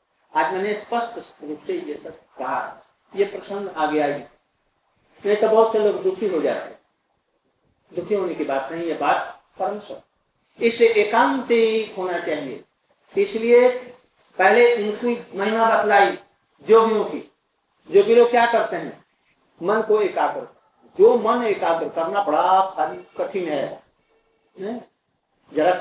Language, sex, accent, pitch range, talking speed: Hindi, male, native, 185-230 Hz, 85 wpm